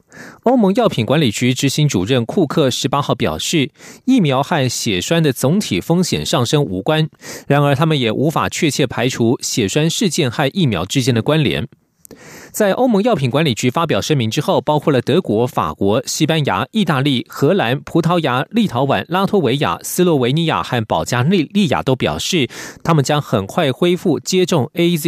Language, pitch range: French, 130-175 Hz